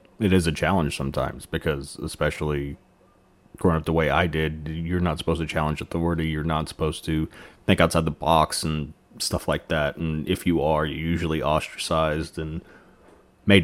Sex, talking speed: male, 175 wpm